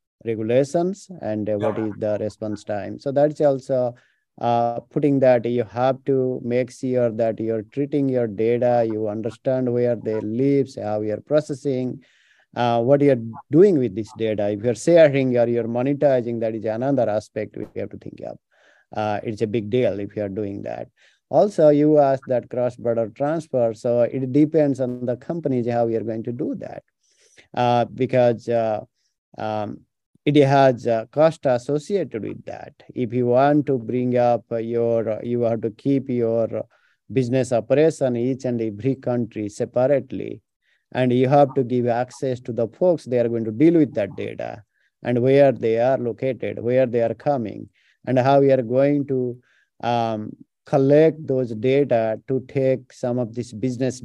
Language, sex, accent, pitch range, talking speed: English, male, Indian, 115-135 Hz, 170 wpm